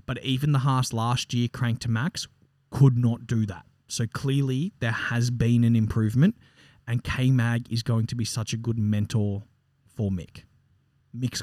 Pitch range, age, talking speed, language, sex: 110-130 Hz, 20-39, 175 wpm, English, male